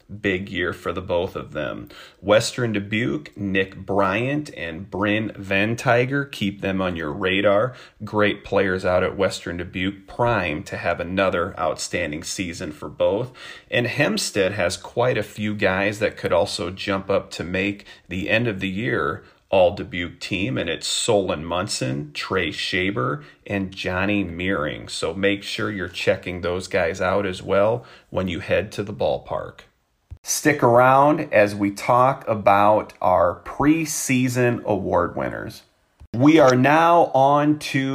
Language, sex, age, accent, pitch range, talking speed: English, male, 30-49, American, 100-135 Hz, 150 wpm